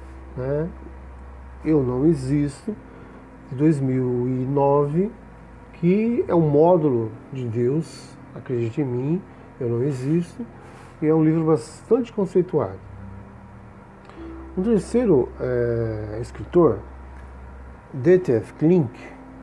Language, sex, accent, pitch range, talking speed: Portuguese, male, Brazilian, 120-155 Hz, 85 wpm